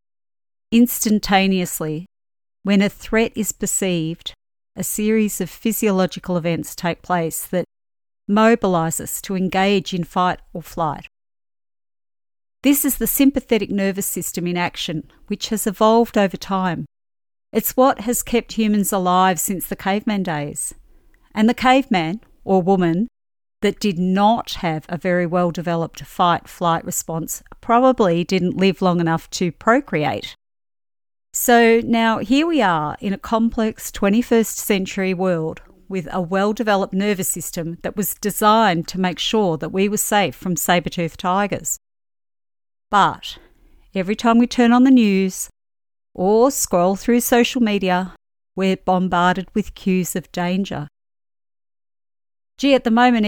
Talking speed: 135 wpm